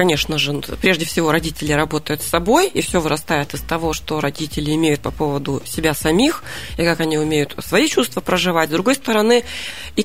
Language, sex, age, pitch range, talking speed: Russian, female, 30-49, 155-195 Hz, 185 wpm